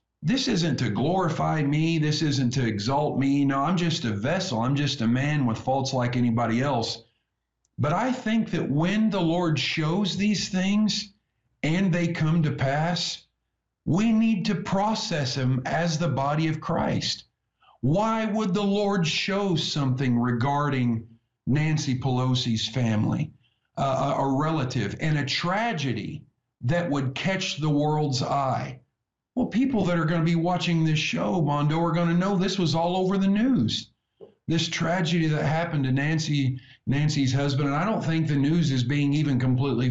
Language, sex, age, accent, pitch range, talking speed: English, male, 50-69, American, 130-175 Hz, 165 wpm